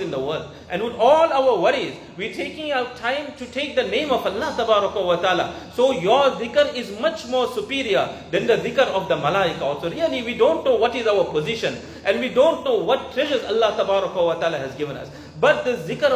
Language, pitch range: English, 210-285 Hz